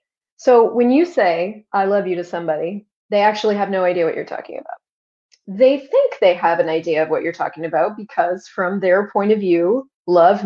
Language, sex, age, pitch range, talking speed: English, female, 30-49, 175-230 Hz, 205 wpm